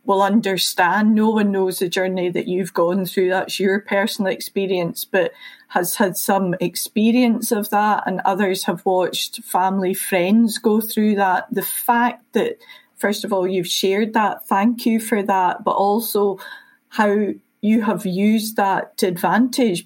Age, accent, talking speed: 40-59, British, 160 wpm